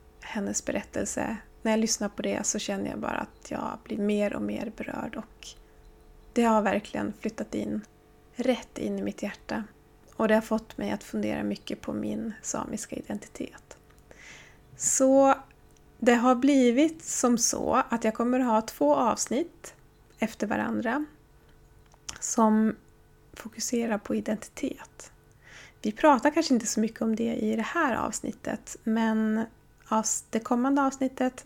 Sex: female